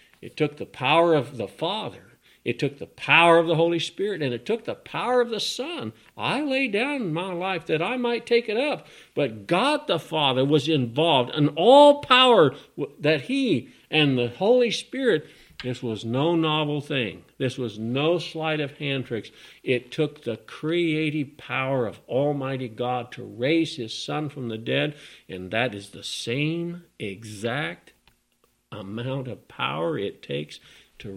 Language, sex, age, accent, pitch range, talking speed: English, male, 50-69, American, 115-165 Hz, 170 wpm